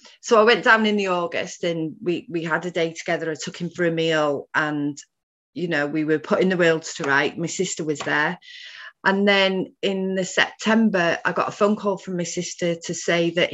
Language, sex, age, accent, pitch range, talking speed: English, female, 30-49, British, 165-205 Hz, 225 wpm